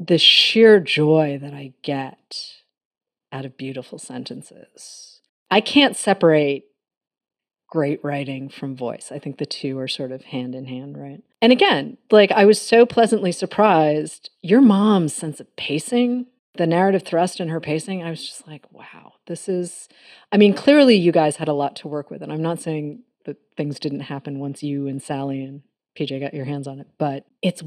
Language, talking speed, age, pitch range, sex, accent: English, 185 wpm, 40-59, 145-190 Hz, female, American